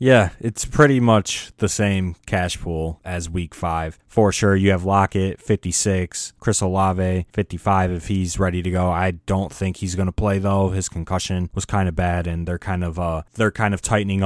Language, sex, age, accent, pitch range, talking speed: English, male, 20-39, American, 90-105 Hz, 200 wpm